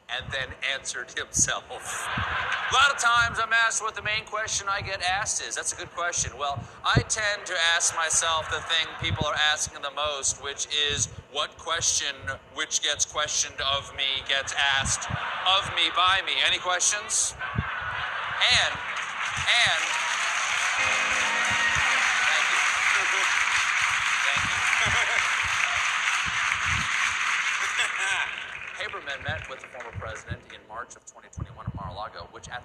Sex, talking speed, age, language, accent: male, 115 wpm, 50-69, English, American